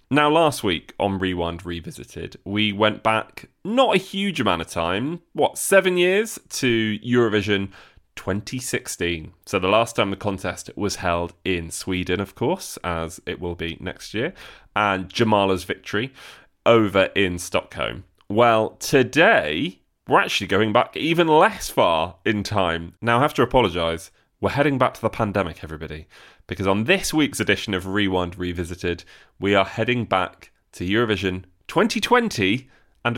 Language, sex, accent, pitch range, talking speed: English, male, British, 90-110 Hz, 150 wpm